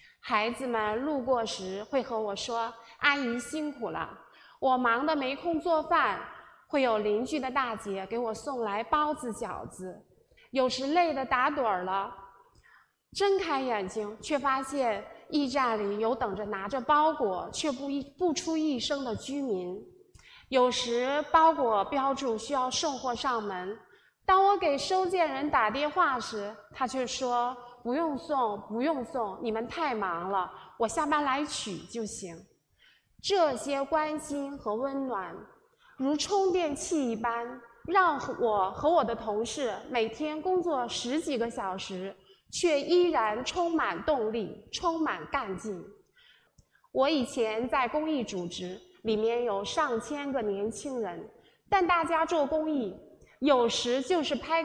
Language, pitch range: Chinese, 225-310 Hz